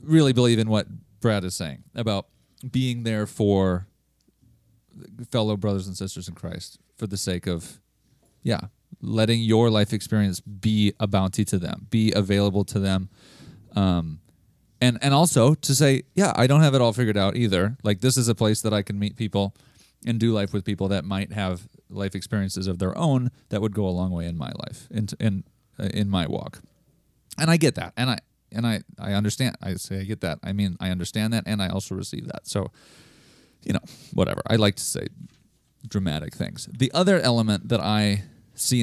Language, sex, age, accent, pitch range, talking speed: English, male, 30-49, American, 95-115 Hz, 200 wpm